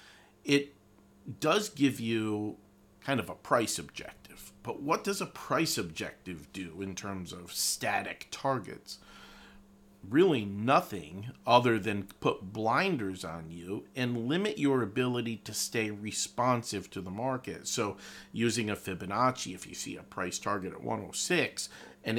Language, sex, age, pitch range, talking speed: English, male, 40-59, 95-120 Hz, 140 wpm